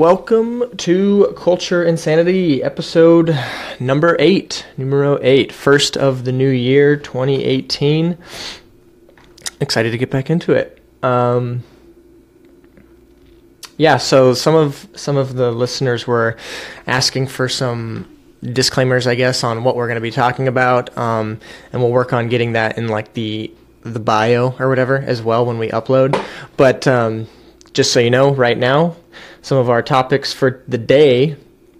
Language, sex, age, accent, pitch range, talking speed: English, male, 20-39, American, 120-145 Hz, 145 wpm